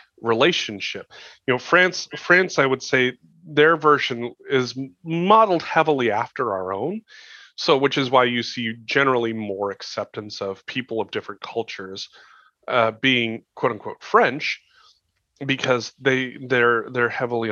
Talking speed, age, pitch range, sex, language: 135 wpm, 30-49, 105-135 Hz, male, English